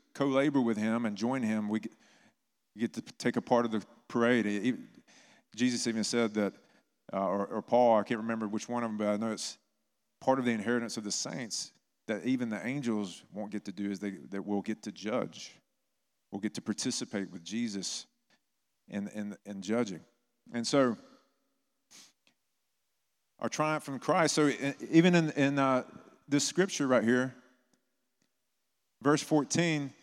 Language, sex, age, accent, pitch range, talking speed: English, male, 40-59, American, 115-165 Hz, 160 wpm